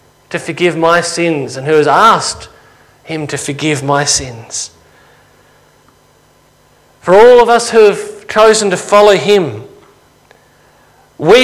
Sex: male